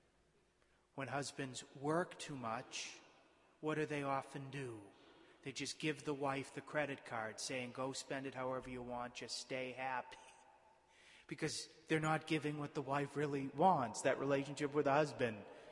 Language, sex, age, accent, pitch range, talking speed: English, male, 30-49, American, 115-150 Hz, 160 wpm